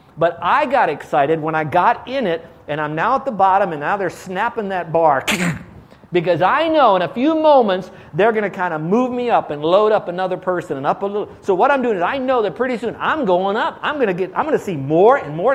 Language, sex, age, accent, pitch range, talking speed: English, male, 50-69, American, 165-220 Hz, 265 wpm